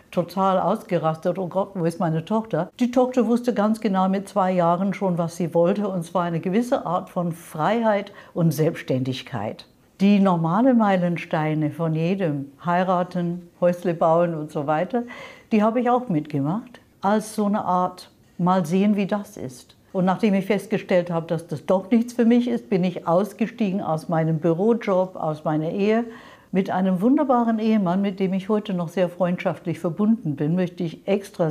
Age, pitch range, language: 60-79, 170-215 Hz, German